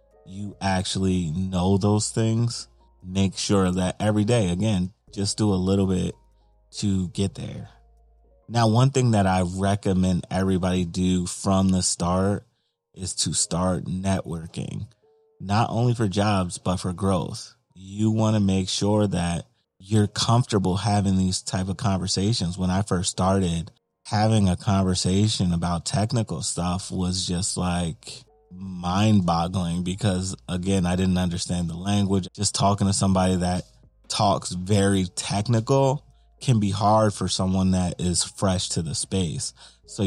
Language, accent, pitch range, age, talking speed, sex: English, American, 90-105 Hz, 30-49, 140 wpm, male